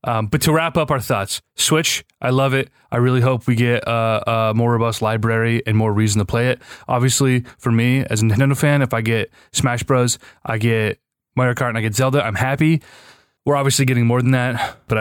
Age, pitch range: 30-49, 115-145 Hz